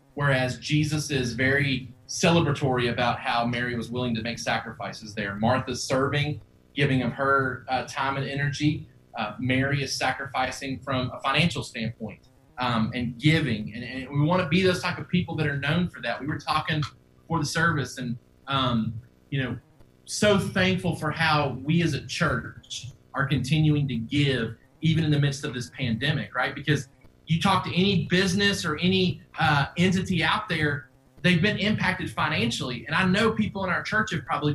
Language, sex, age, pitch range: English, male, 30-49, 125-170 Hz